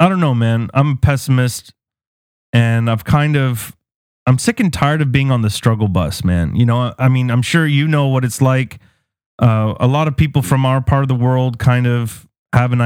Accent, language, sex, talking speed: American, English, male, 225 wpm